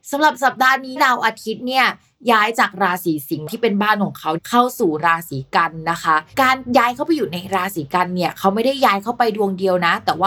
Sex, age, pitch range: female, 20-39, 180-245 Hz